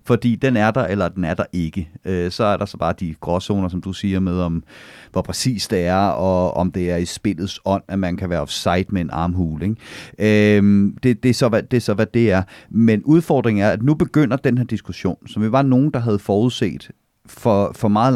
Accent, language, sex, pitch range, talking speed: native, Danish, male, 100-130 Hz, 220 wpm